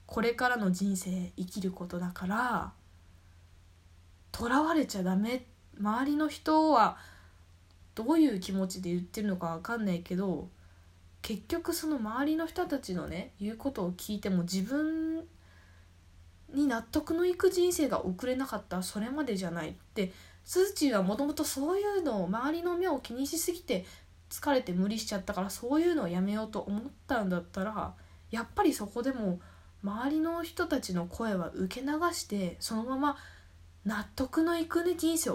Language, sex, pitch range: Japanese, female, 180-295 Hz